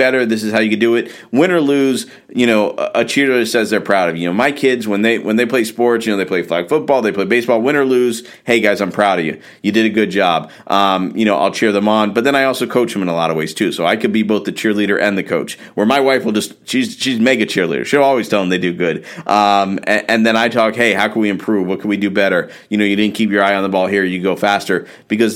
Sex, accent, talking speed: male, American, 305 wpm